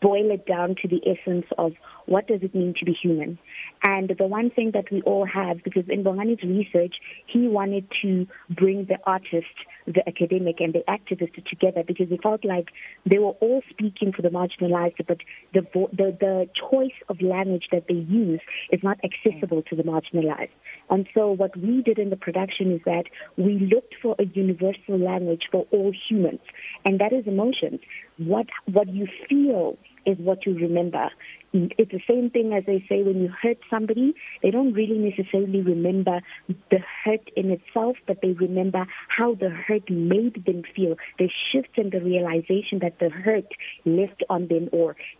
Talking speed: 180 wpm